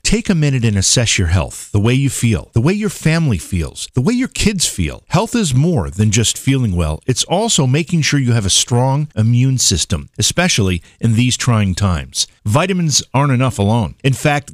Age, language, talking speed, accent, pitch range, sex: 50-69, English, 200 wpm, American, 105-140 Hz, male